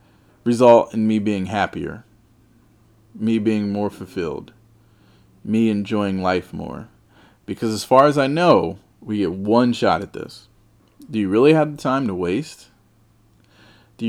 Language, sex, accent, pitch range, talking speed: English, male, American, 100-115 Hz, 145 wpm